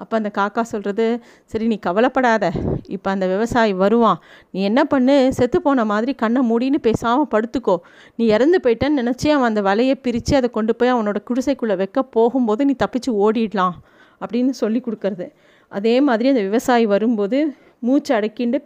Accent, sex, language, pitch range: native, female, Tamil, 215-265 Hz